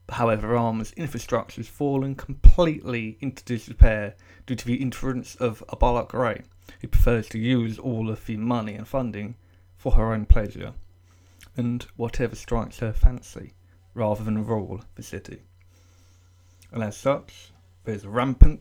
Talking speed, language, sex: 145 wpm, English, male